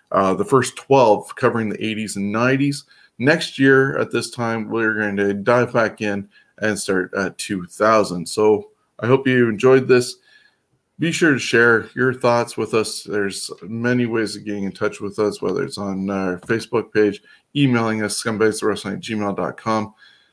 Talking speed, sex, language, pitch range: 165 wpm, male, English, 105-125 Hz